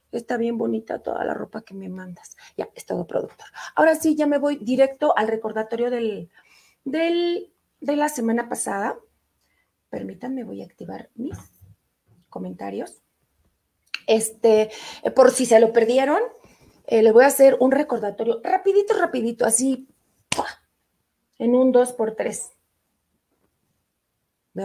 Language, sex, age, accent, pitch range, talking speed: Spanish, female, 30-49, Mexican, 190-265 Hz, 135 wpm